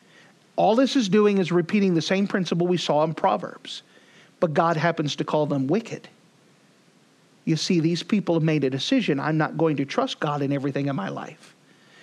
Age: 50-69